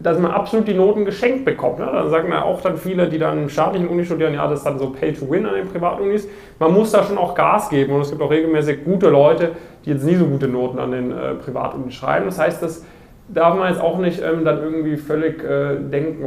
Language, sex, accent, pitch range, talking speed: German, male, German, 140-170 Hz, 235 wpm